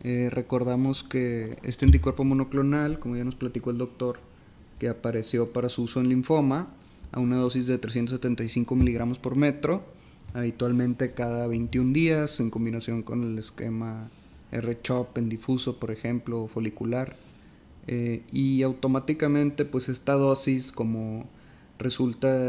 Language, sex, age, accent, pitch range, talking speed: English, male, 20-39, Mexican, 120-135 Hz, 135 wpm